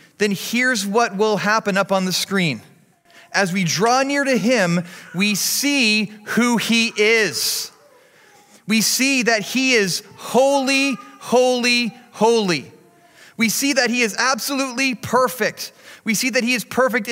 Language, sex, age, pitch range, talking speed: English, male, 30-49, 205-265 Hz, 145 wpm